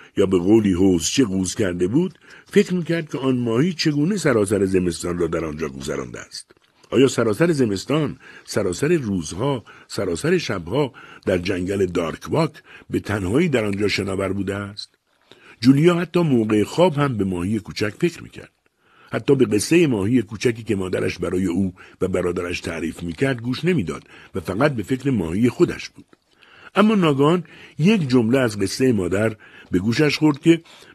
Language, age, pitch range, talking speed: Persian, 50-69, 95-155 Hz, 160 wpm